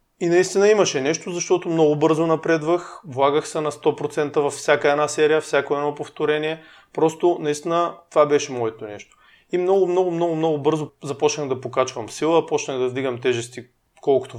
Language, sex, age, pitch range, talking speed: Bulgarian, male, 30-49, 125-160 Hz, 165 wpm